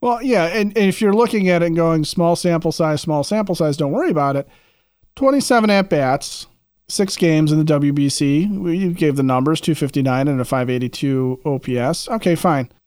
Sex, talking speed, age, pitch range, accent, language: male, 180 wpm, 40-59, 145-185 Hz, American, English